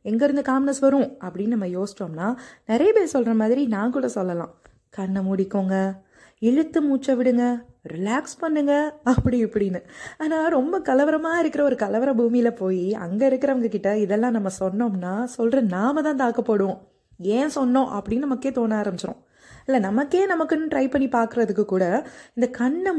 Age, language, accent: 20-39, Tamil, native